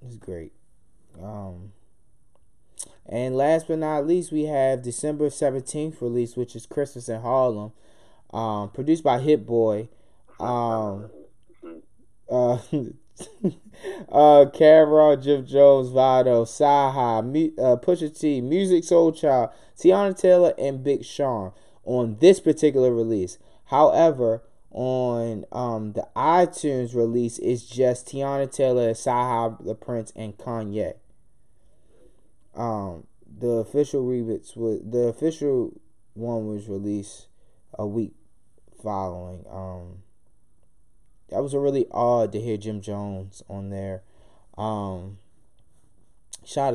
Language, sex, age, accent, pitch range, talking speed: English, male, 20-39, American, 100-140 Hz, 115 wpm